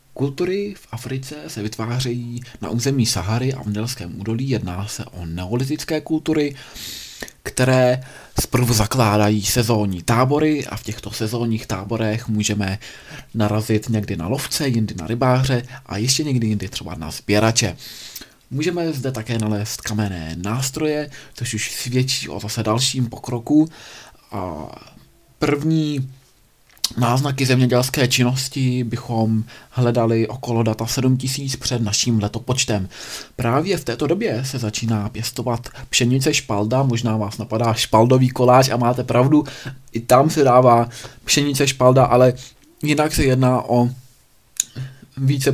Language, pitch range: Czech, 110-135 Hz